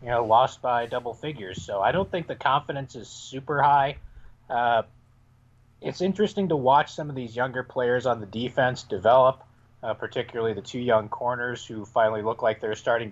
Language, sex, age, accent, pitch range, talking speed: English, male, 30-49, American, 110-125 Hz, 190 wpm